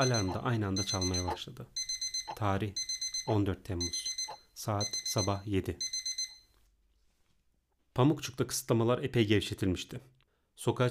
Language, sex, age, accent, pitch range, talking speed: Turkish, male, 40-59, native, 95-120 Hz, 95 wpm